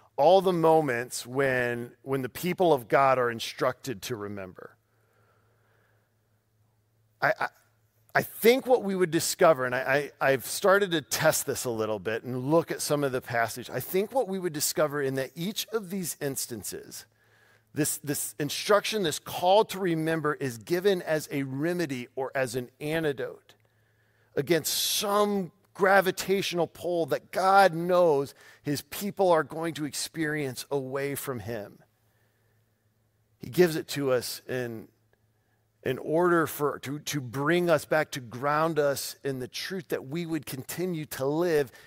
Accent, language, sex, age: American, English, male, 40-59